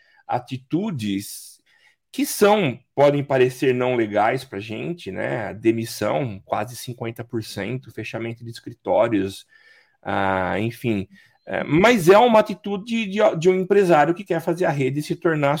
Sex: male